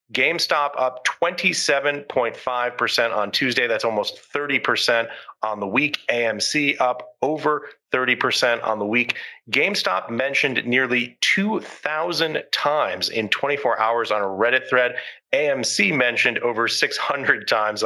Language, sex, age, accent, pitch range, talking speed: English, male, 30-49, American, 110-130 Hz, 120 wpm